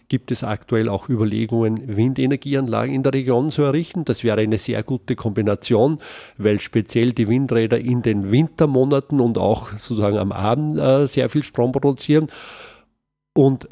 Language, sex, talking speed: German, male, 150 wpm